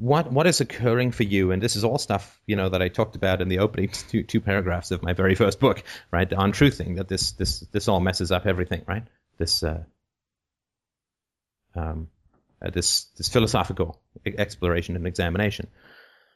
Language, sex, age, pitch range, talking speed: English, male, 30-49, 90-115 Hz, 185 wpm